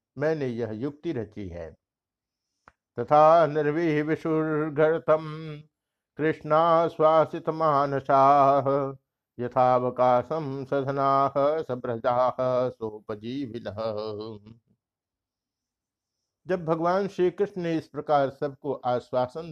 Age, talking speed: 60-79, 50 wpm